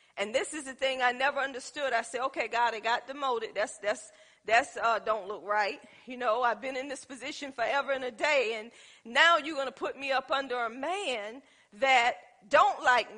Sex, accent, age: female, American, 40-59